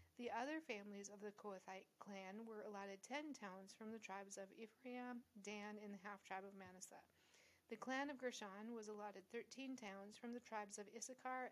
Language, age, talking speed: English, 40-59, 180 wpm